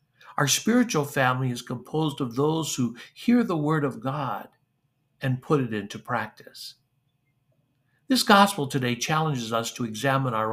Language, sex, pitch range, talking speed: English, male, 125-155 Hz, 150 wpm